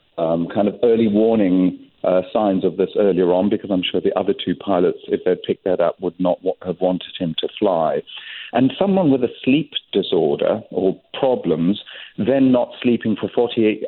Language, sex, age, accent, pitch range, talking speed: English, male, 50-69, British, 95-125 Hz, 190 wpm